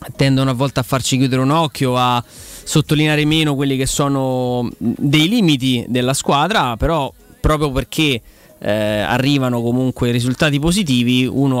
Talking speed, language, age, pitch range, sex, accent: 140 wpm, Italian, 20-39, 120-145 Hz, male, native